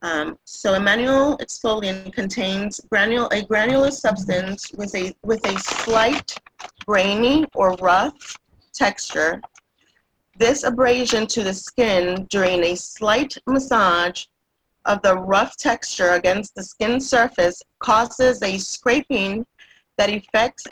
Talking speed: 115 wpm